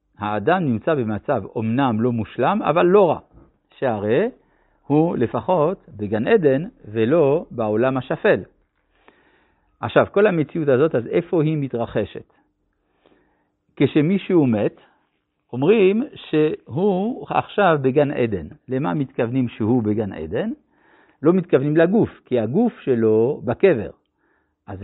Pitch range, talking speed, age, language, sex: 115-170 Hz, 110 wpm, 60-79, Hebrew, male